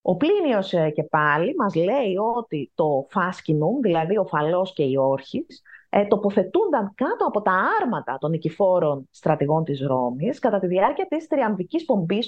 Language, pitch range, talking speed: Greek, 170-290 Hz, 150 wpm